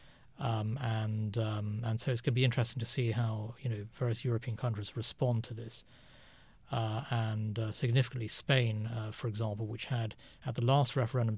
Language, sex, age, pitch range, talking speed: English, male, 30-49, 110-125 Hz, 185 wpm